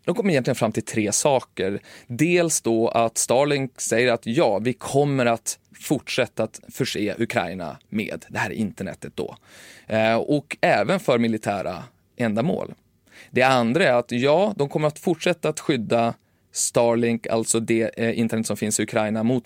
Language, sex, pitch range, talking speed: Swedish, male, 115-140 Hz, 155 wpm